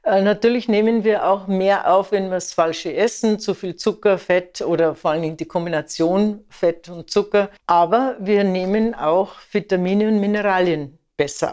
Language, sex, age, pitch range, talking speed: German, female, 60-79, 170-205 Hz, 160 wpm